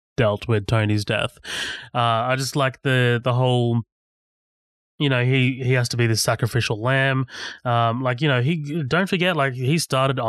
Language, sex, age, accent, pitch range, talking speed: English, male, 20-39, Australian, 110-135 Hz, 180 wpm